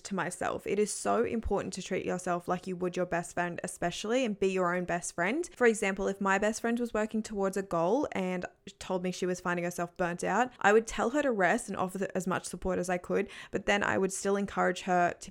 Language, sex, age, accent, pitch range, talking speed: English, female, 20-39, Australian, 180-215 Hz, 250 wpm